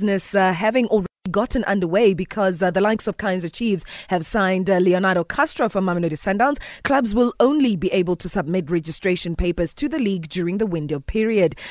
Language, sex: English, female